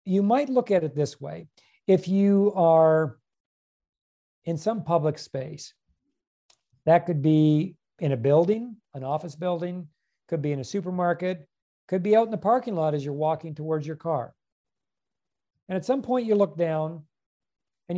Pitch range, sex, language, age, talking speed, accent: 145-200 Hz, male, English, 50-69, 165 wpm, American